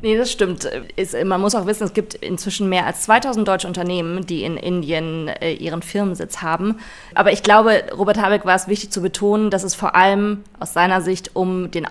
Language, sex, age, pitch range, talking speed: German, female, 20-39, 175-210 Hz, 205 wpm